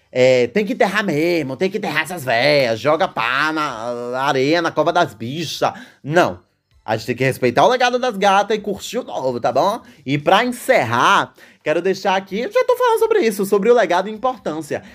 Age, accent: 20-39, Brazilian